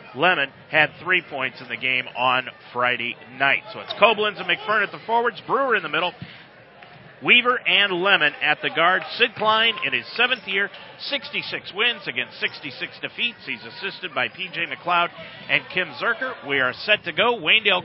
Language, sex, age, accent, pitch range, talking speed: English, male, 40-59, American, 145-190 Hz, 180 wpm